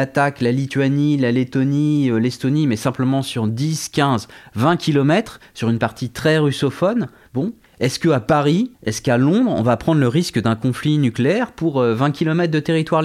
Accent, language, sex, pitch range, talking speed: French, French, male, 115-150 Hz, 180 wpm